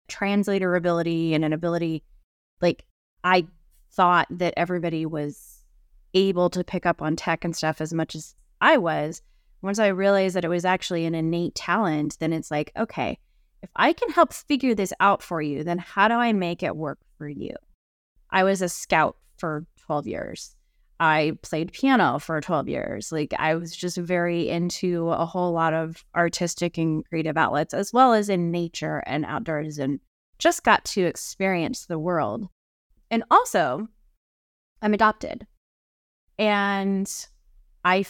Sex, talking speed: female, 160 wpm